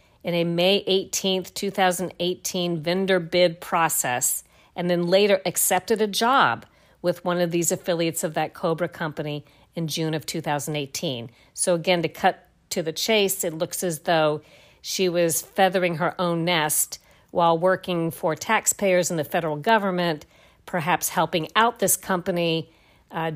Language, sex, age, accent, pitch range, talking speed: English, female, 50-69, American, 165-195 Hz, 150 wpm